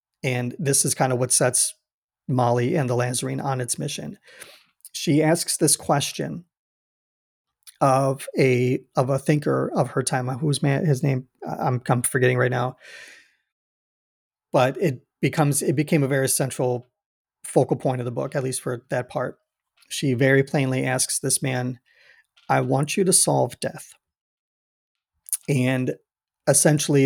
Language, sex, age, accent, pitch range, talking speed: English, male, 30-49, American, 125-150 Hz, 150 wpm